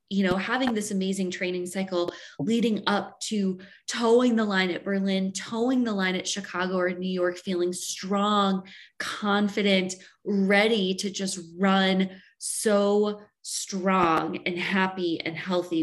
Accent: American